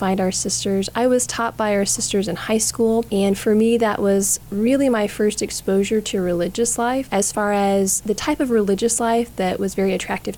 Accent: American